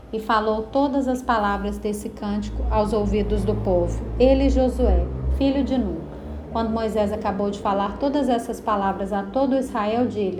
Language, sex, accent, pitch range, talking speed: Portuguese, female, Brazilian, 210-255 Hz, 155 wpm